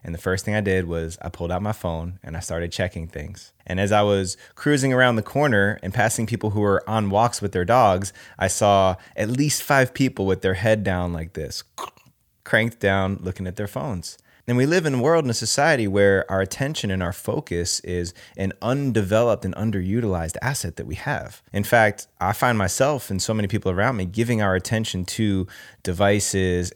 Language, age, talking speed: English, 20-39, 210 wpm